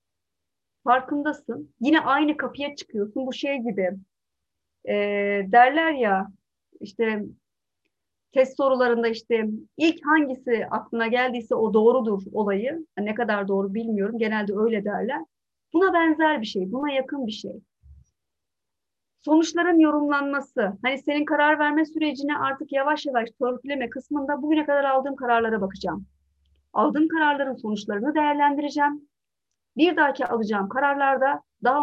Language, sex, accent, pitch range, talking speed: Turkish, female, native, 220-300 Hz, 120 wpm